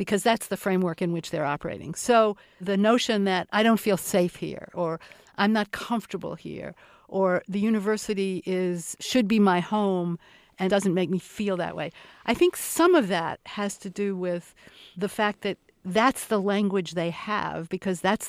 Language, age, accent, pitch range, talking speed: English, 60-79, American, 180-215 Hz, 185 wpm